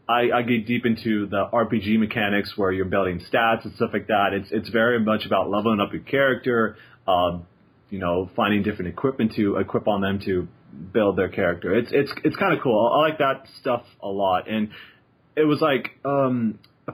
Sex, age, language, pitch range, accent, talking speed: male, 30-49, English, 100-120 Hz, American, 200 wpm